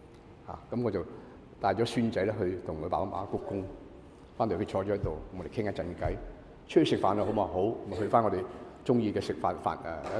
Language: Chinese